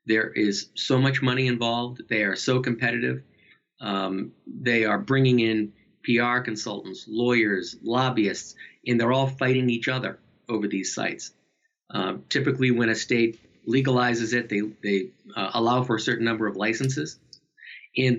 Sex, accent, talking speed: male, American, 150 wpm